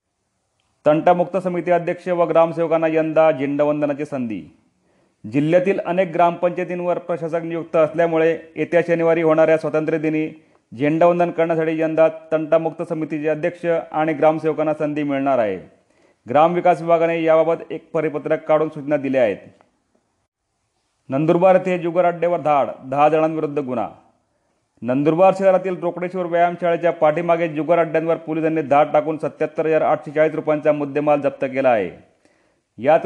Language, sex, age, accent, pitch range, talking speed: Marathi, male, 40-59, native, 150-170 Hz, 120 wpm